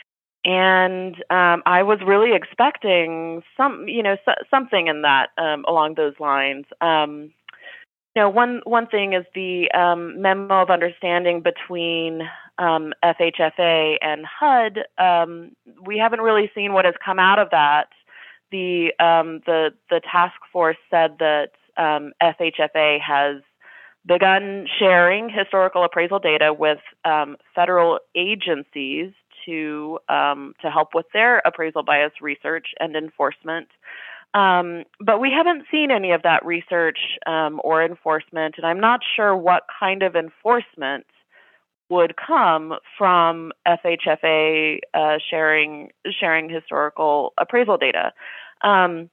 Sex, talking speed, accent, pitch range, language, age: female, 130 wpm, American, 155-190 Hz, English, 20-39